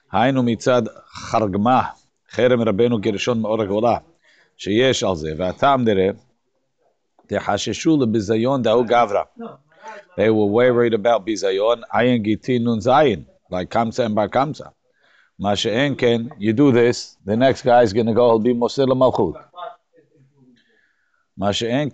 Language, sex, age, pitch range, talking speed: English, male, 50-69, 110-145 Hz, 40 wpm